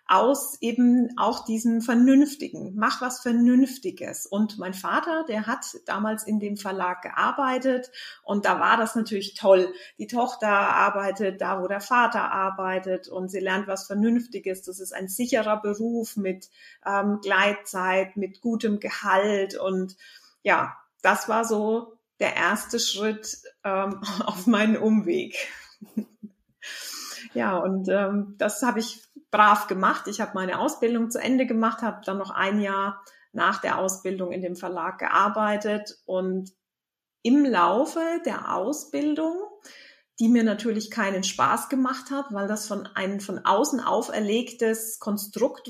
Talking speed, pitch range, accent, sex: 140 wpm, 195-250 Hz, German, female